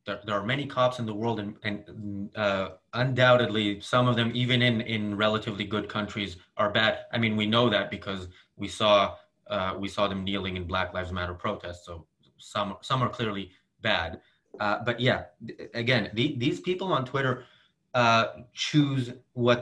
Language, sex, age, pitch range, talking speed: English, male, 30-49, 100-125 Hz, 185 wpm